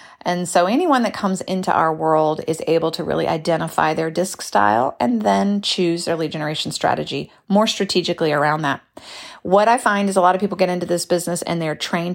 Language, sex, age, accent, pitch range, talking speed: English, female, 30-49, American, 160-200 Hz, 205 wpm